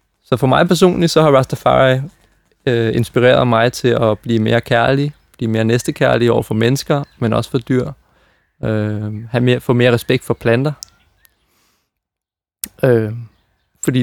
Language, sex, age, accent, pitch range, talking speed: Danish, male, 20-39, native, 110-135 Hz, 130 wpm